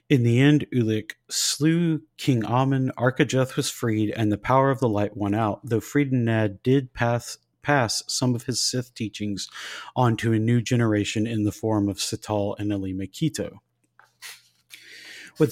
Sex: male